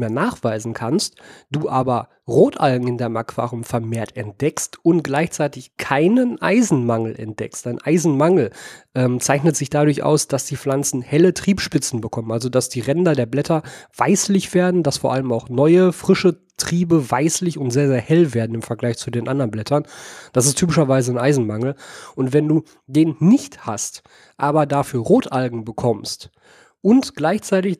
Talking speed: 160 wpm